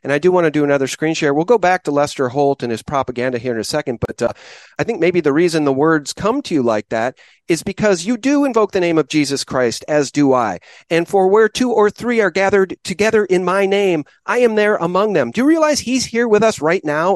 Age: 40-59